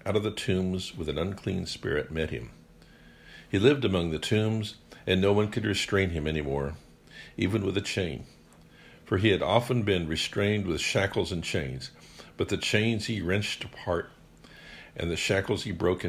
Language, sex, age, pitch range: English, male, 60-79, 80-110 Hz